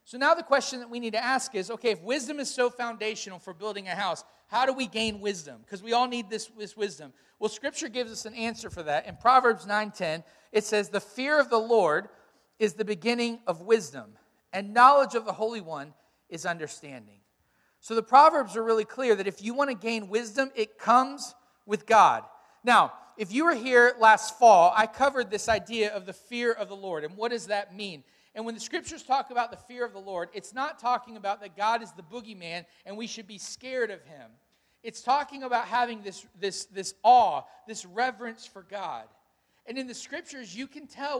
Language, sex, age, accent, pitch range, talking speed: English, male, 40-59, American, 205-255 Hz, 215 wpm